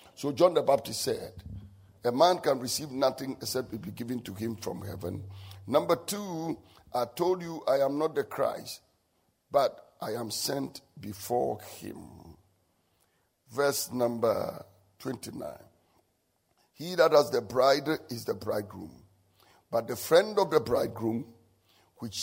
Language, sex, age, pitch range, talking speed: English, male, 50-69, 95-140 Hz, 140 wpm